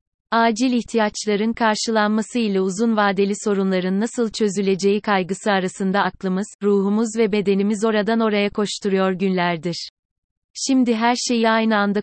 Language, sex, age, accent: Turkish, female, 30-49, native